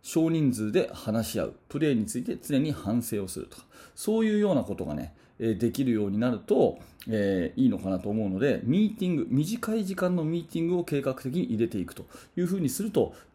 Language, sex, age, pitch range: Japanese, male, 40-59, 110-160 Hz